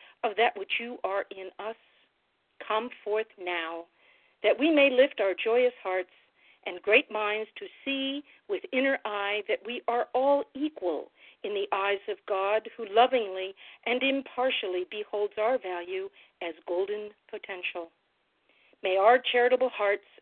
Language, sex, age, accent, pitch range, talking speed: English, female, 50-69, American, 190-250 Hz, 145 wpm